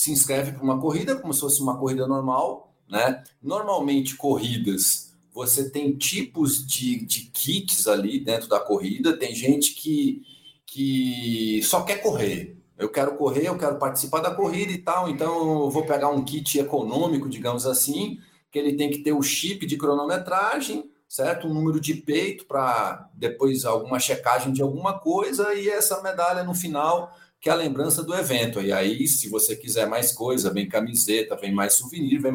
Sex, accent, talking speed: male, Brazilian, 180 wpm